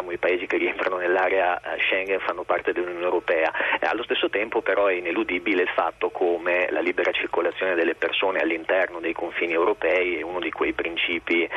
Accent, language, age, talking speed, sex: native, Italian, 40-59, 170 wpm, male